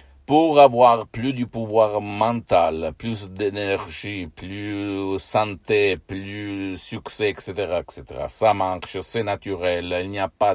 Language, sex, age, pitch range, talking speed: Italian, male, 60-79, 95-115 Hz, 135 wpm